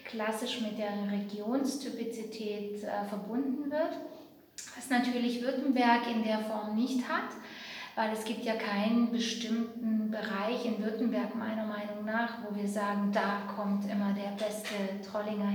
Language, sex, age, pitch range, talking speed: English, female, 20-39, 215-250 Hz, 140 wpm